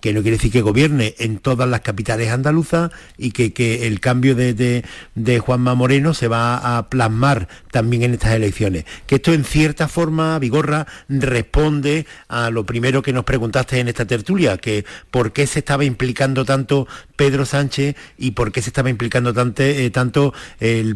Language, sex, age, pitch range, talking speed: Spanish, male, 50-69, 115-140 Hz, 180 wpm